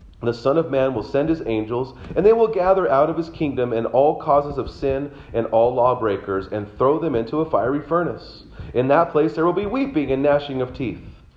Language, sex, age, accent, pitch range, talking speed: English, male, 40-59, American, 130-180 Hz, 220 wpm